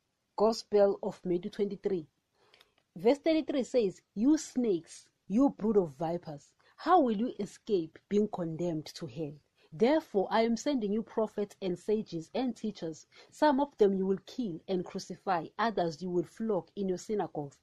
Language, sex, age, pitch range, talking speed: English, female, 40-59, 170-225 Hz, 155 wpm